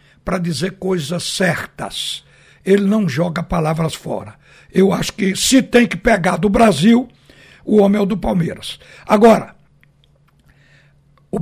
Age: 60-79